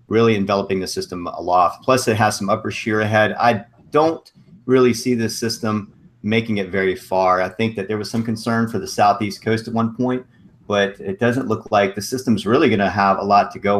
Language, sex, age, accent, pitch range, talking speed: English, male, 40-59, American, 100-115 Hz, 215 wpm